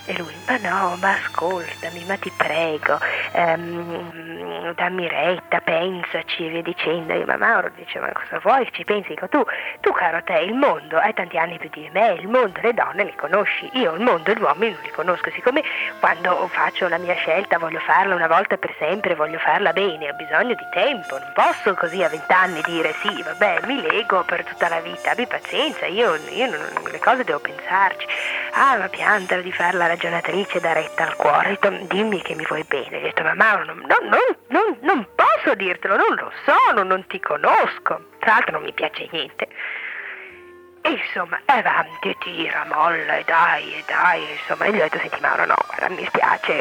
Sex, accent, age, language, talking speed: female, native, 30-49, Italian, 200 wpm